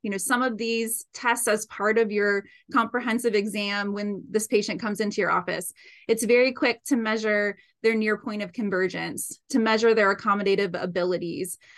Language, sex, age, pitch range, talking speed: English, female, 20-39, 200-235 Hz, 175 wpm